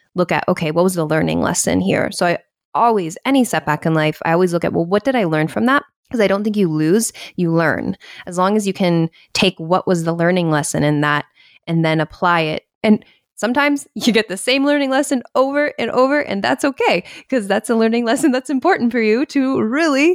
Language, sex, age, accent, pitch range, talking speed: English, female, 20-39, American, 165-215 Hz, 230 wpm